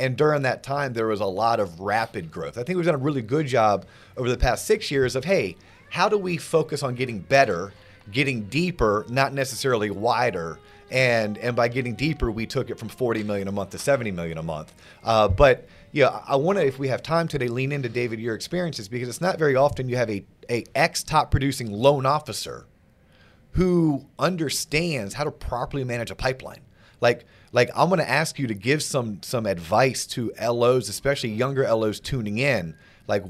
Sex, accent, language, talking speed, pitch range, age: male, American, English, 205 wpm, 110-140 Hz, 30-49